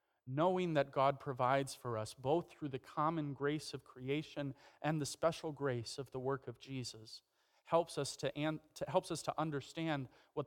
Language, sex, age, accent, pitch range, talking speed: English, male, 40-59, American, 120-155 Hz, 160 wpm